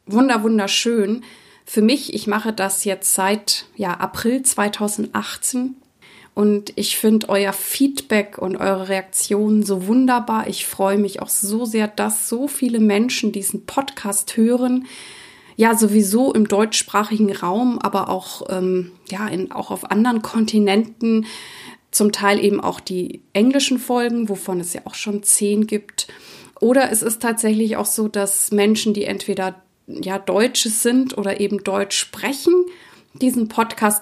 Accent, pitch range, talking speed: German, 195-235 Hz, 145 wpm